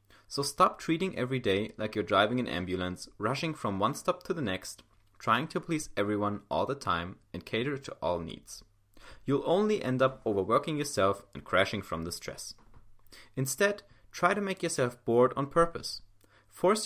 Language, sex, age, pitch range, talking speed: English, male, 30-49, 100-140 Hz, 175 wpm